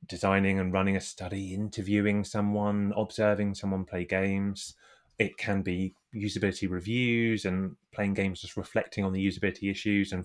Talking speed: 150 wpm